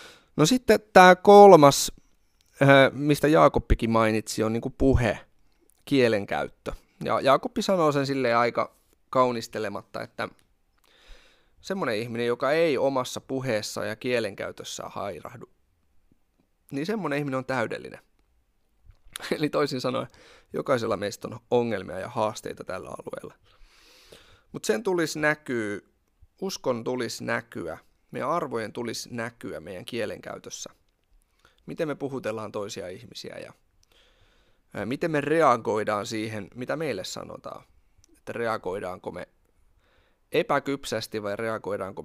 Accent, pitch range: native, 105-145 Hz